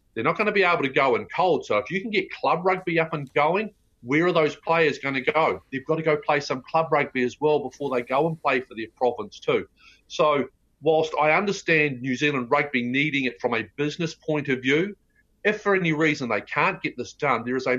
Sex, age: male, 40-59